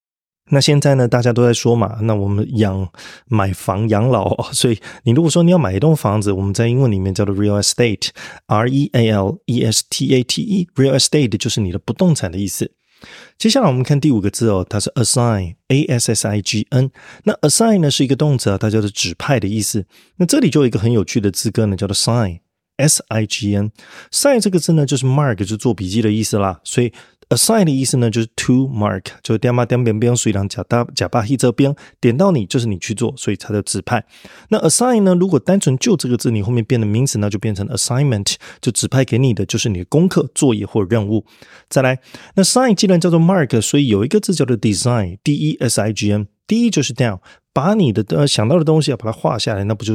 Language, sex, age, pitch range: Chinese, male, 20-39, 105-140 Hz